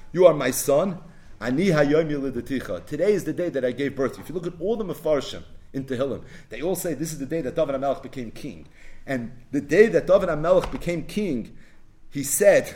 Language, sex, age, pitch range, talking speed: English, male, 40-59, 125-175 Hz, 195 wpm